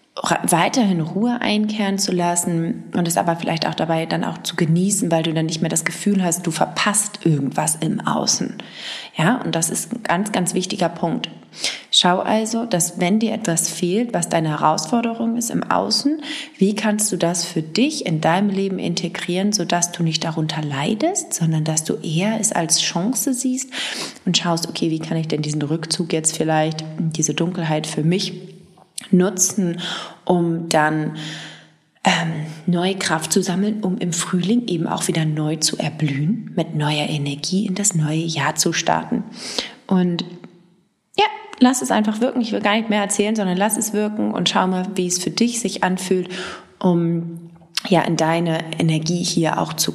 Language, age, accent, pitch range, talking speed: English, 30-49, German, 165-210 Hz, 175 wpm